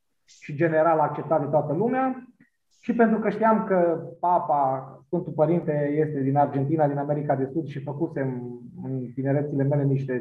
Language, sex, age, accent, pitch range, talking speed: Romanian, male, 20-39, native, 145-180 Hz, 160 wpm